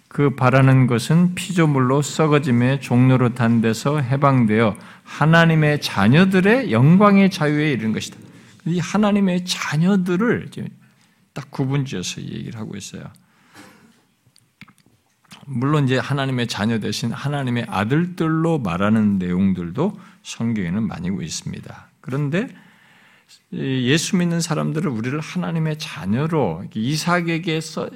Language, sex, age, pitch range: Korean, male, 50-69, 120-175 Hz